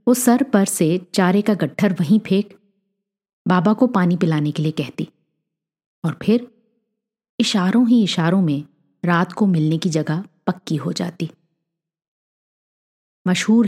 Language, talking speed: Hindi, 130 wpm